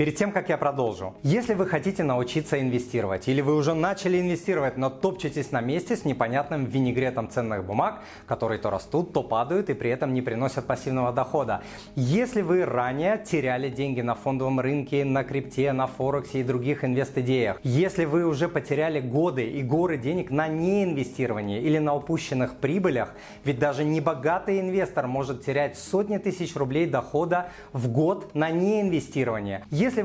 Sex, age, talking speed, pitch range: male, 30-49, 160 wpm, 130-175 Hz